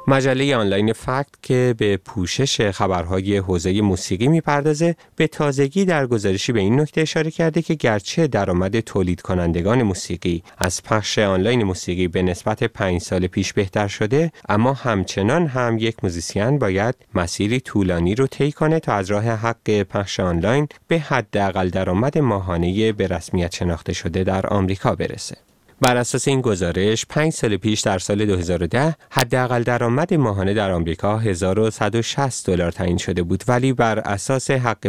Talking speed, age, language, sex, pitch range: 150 wpm, 30-49, Persian, male, 95-130 Hz